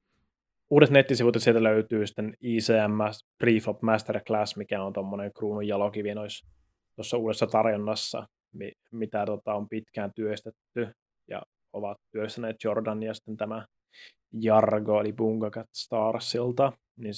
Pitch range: 105-115 Hz